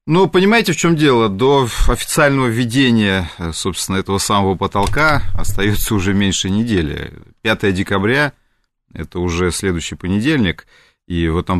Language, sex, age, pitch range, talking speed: Russian, male, 30-49, 85-105 Hz, 135 wpm